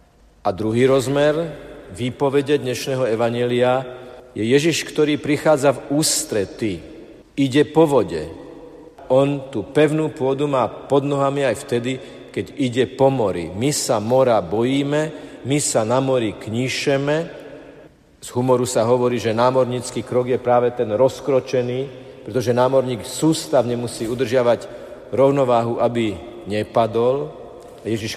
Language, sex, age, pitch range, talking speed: Slovak, male, 50-69, 115-145 Hz, 120 wpm